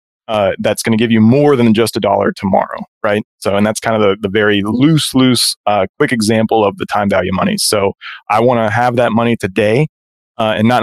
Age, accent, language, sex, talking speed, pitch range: 20-39, American, English, male, 235 wpm, 105-130 Hz